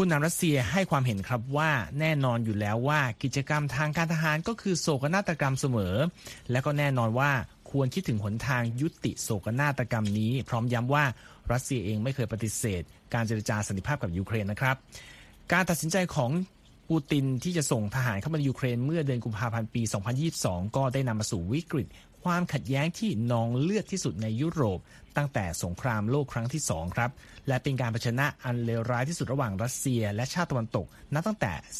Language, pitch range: Thai, 115-150 Hz